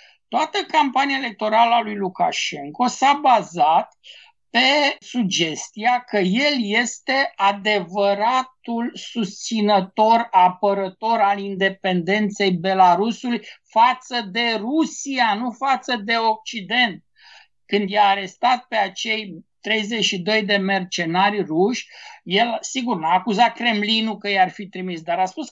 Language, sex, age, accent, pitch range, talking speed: Romanian, male, 60-79, native, 195-245 Hz, 110 wpm